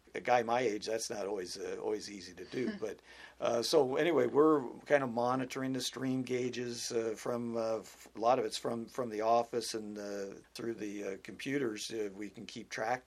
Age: 50-69